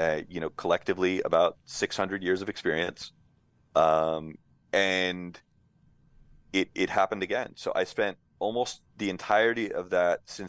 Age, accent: 30-49, American